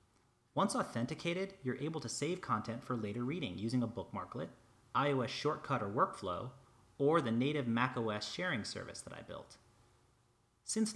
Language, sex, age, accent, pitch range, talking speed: English, male, 30-49, American, 110-135 Hz, 150 wpm